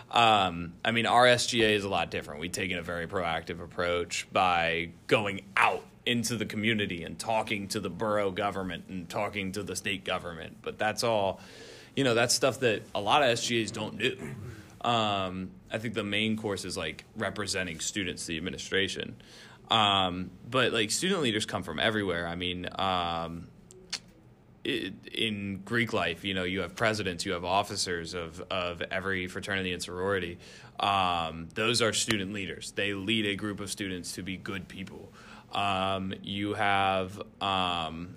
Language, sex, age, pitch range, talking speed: English, male, 20-39, 90-105 Hz, 170 wpm